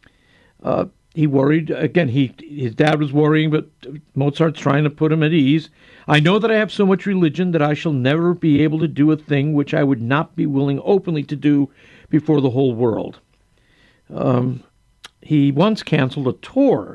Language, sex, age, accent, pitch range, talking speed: English, male, 60-79, American, 130-175 Hz, 190 wpm